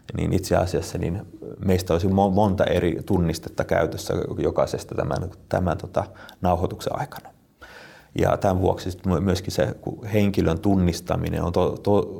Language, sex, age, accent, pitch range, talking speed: Finnish, male, 30-49, native, 90-105 Hz, 130 wpm